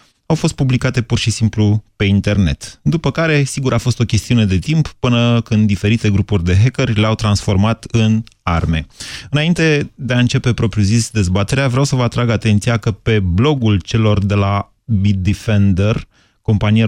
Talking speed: 165 wpm